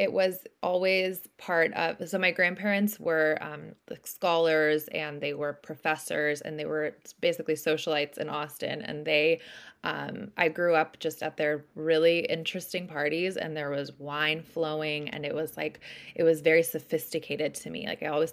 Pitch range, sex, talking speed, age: 150-170 Hz, female, 170 wpm, 20-39